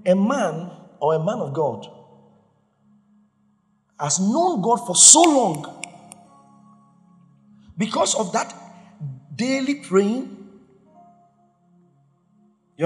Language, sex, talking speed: English, male, 90 wpm